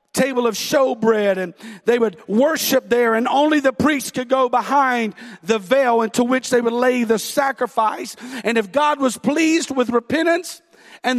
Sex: male